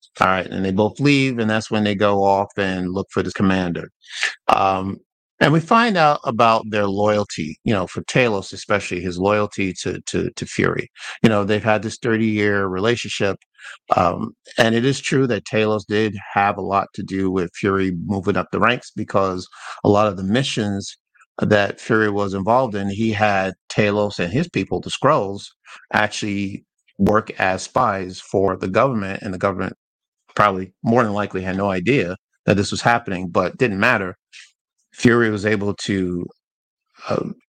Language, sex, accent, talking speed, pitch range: English, male, American, 180 wpm, 95-110 Hz